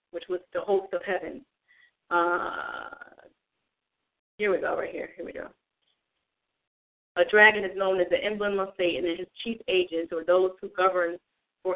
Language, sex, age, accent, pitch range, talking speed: English, female, 40-59, American, 175-200 Hz, 170 wpm